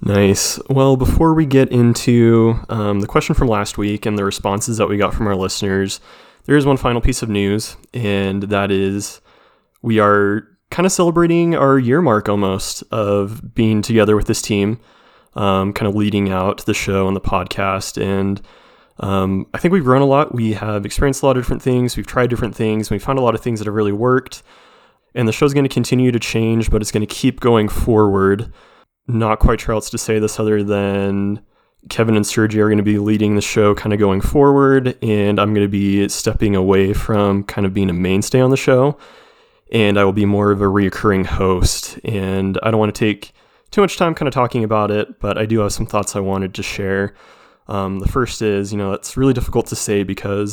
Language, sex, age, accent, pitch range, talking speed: English, male, 20-39, American, 100-120 Hz, 220 wpm